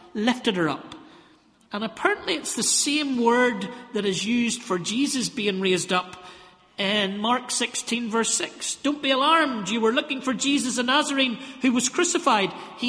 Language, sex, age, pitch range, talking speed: English, male, 50-69, 220-280 Hz, 170 wpm